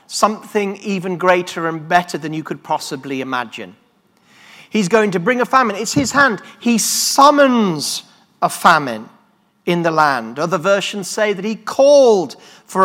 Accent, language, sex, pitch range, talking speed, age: British, English, male, 185-235 Hz, 155 wpm, 40-59